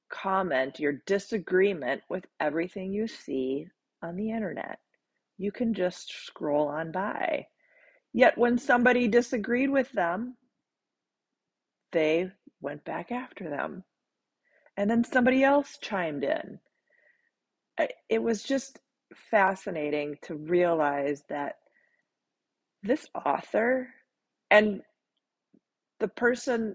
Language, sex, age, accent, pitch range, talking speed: English, female, 40-59, American, 190-275 Hz, 100 wpm